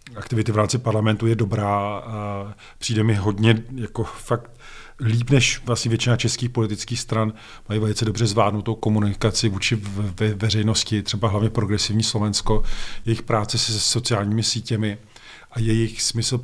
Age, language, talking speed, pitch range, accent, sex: 40-59, Czech, 140 wpm, 105-115 Hz, native, male